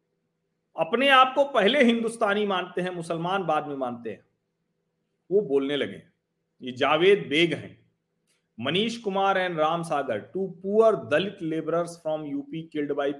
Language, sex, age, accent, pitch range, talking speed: Hindi, male, 40-59, native, 140-205 Hz, 145 wpm